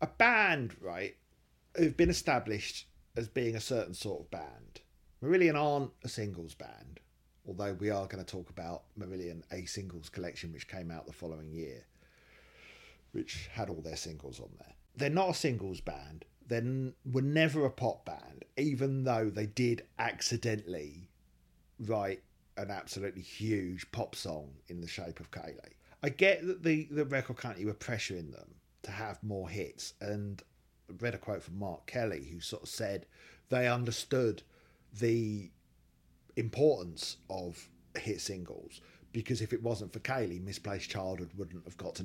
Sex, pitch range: male, 85-120 Hz